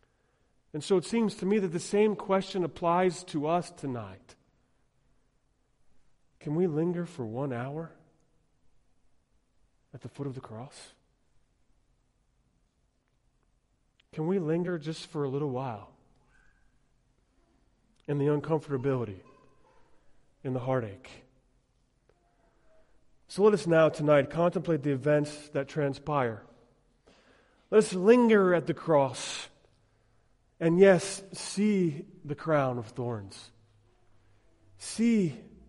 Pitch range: 130-200 Hz